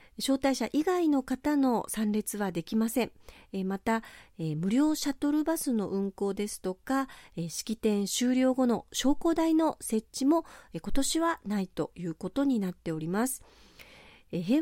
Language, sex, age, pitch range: Japanese, female, 40-59, 195-280 Hz